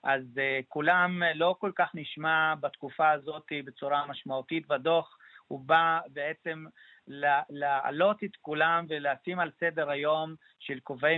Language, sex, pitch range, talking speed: Hebrew, male, 145-180 Hz, 130 wpm